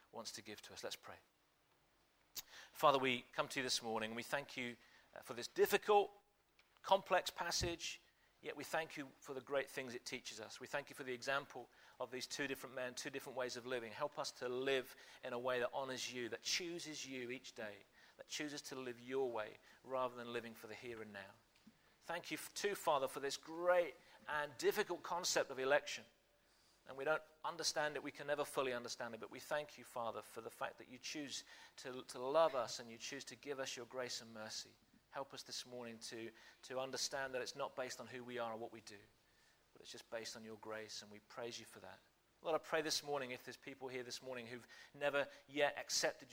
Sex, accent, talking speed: male, British, 225 wpm